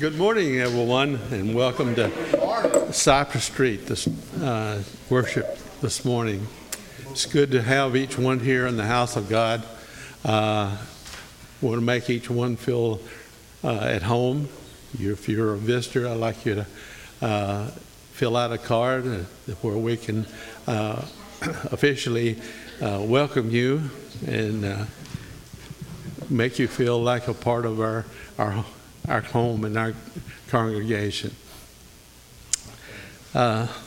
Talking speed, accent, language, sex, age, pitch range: 135 wpm, American, English, male, 60-79, 110-130 Hz